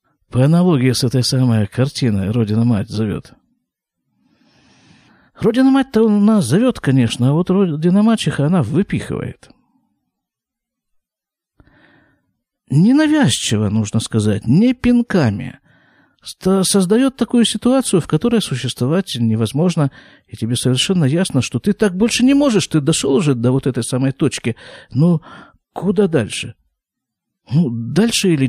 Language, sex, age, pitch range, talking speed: Russian, male, 50-69, 125-195 Hz, 115 wpm